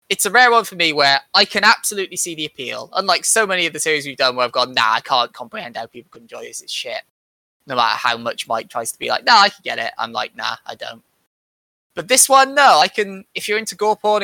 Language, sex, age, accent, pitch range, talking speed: English, male, 10-29, British, 125-180 Hz, 275 wpm